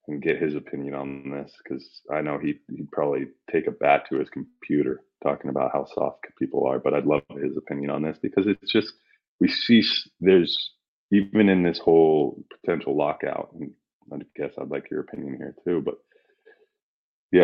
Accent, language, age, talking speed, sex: American, English, 30-49, 185 wpm, male